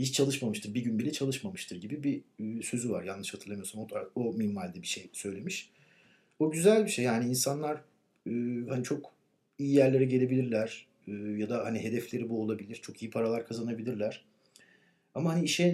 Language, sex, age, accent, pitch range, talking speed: Turkish, male, 60-79, native, 110-145 Hz, 160 wpm